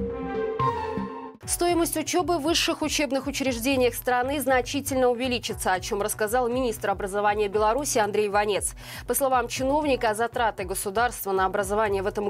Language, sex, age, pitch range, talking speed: Russian, female, 20-39, 210-270 Hz, 125 wpm